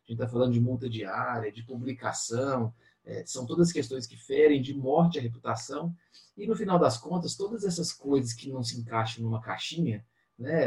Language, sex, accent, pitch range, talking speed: Portuguese, male, Brazilian, 115-165 Hz, 190 wpm